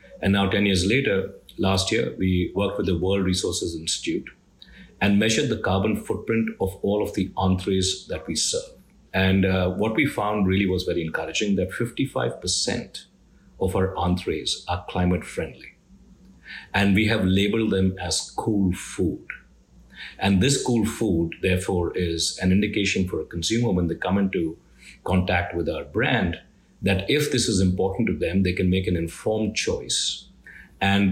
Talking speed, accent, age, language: 160 wpm, Indian, 50-69, English